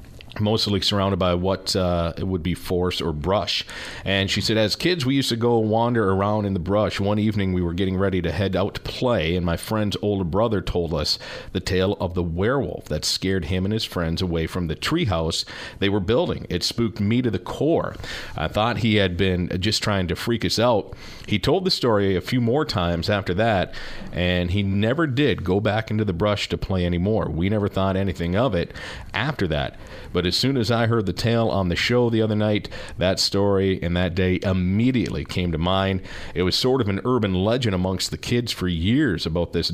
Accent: American